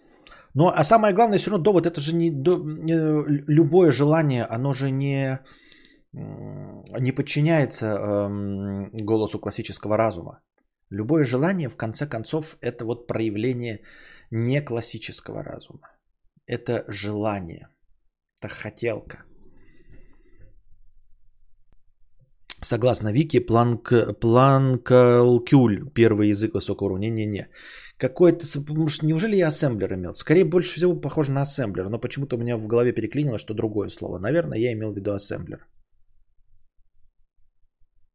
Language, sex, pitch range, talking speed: Bulgarian, male, 100-150 Hz, 115 wpm